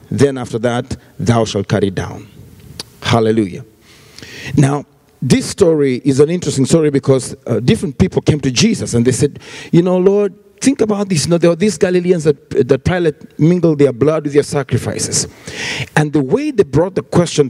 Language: English